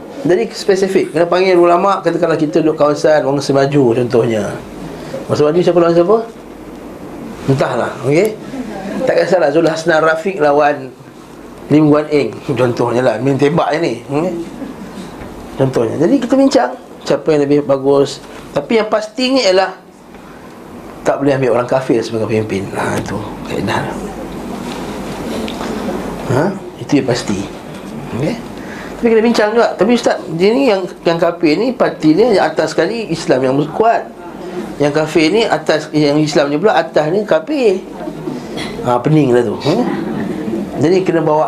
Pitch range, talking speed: 125-185 Hz, 145 wpm